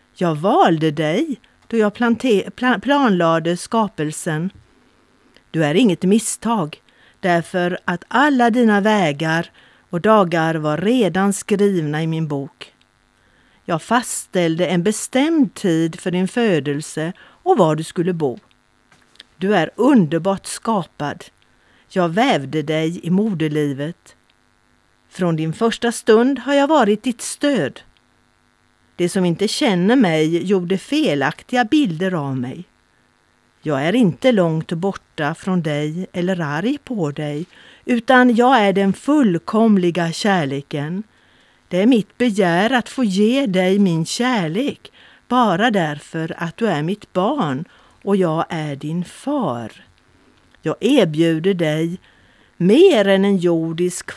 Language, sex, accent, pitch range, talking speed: Swedish, female, native, 160-225 Hz, 125 wpm